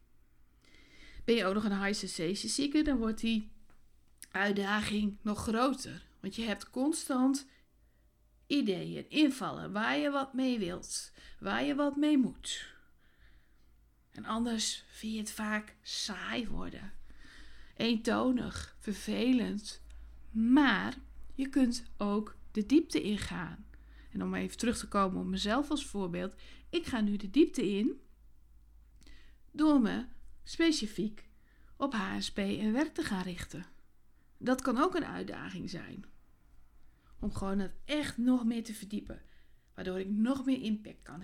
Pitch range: 185-260 Hz